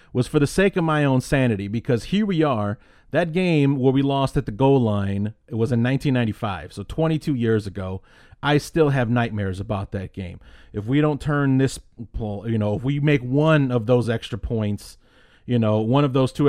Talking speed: 210 wpm